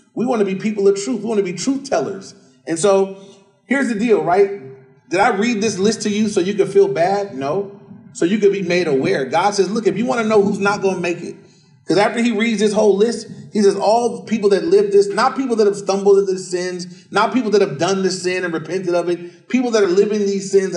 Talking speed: 265 wpm